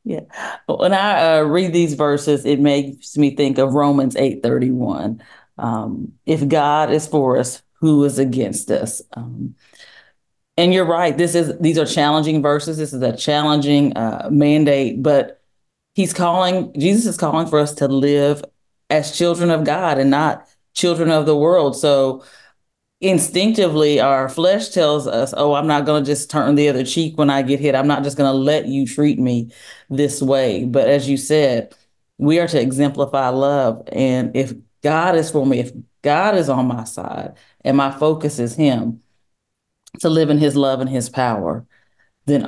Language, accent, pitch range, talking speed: English, American, 135-155 Hz, 180 wpm